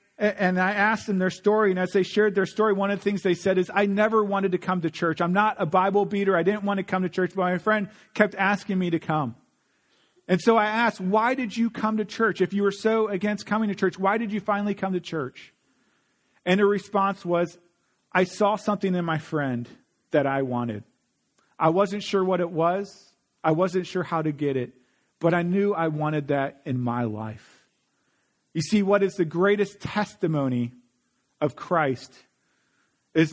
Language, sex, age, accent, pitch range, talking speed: English, male, 40-59, American, 145-200 Hz, 210 wpm